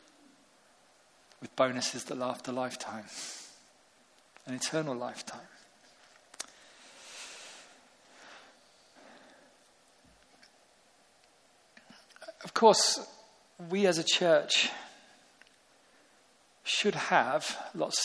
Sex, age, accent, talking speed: male, 40-59, British, 60 wpm